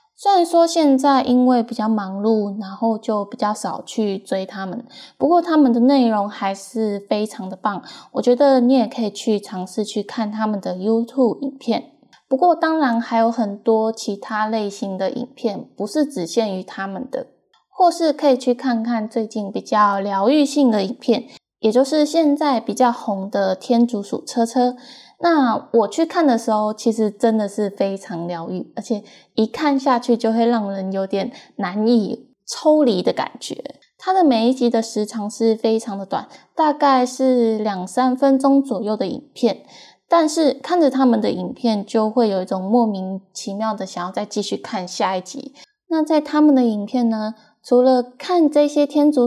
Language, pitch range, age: Chinese, 210-265 Hz, 10-29